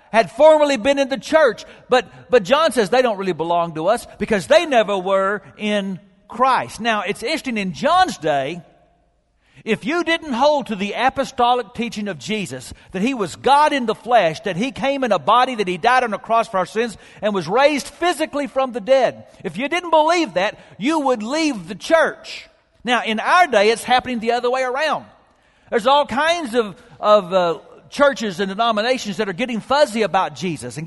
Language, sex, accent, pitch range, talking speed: English, male, American, 205-280 Hz, 200 wpm